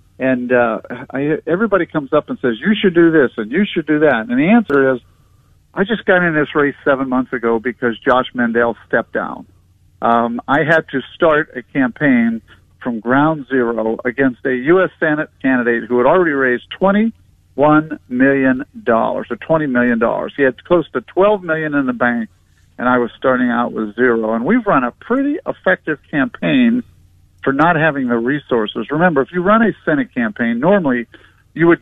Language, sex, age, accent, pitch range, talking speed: English, male, 50-69, American, 120-160 Hz, 185 wpm